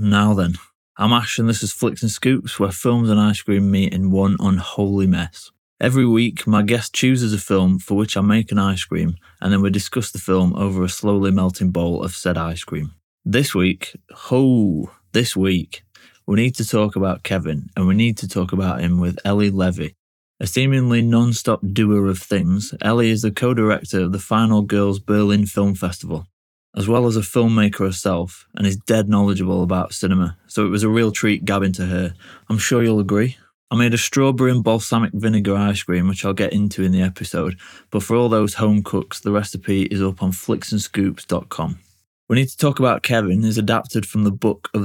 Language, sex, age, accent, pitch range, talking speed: English, male, 20-39, British, 95-110 Hz, 205 wpm